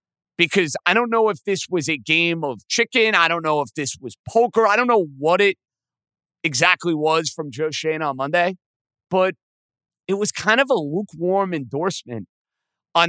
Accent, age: American, 30-49